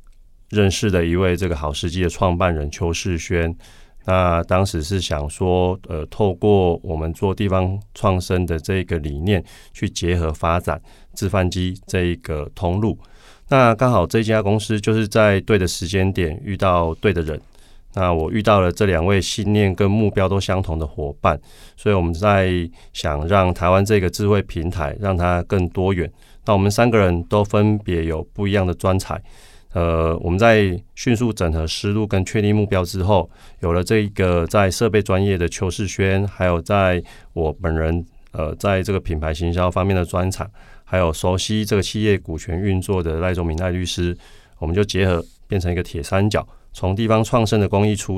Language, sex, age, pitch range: Chinese, male, 30-49, 85-100 Hz